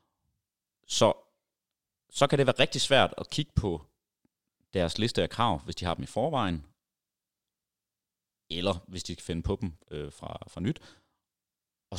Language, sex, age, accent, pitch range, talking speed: Danish, male, 30-49, native, 80-105 Hz, 160 wpm